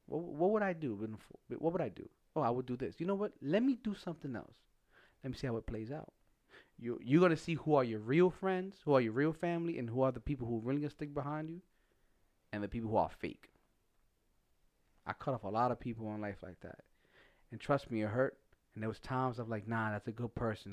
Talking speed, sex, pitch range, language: 260 wpm, male, 100-135 Hz, English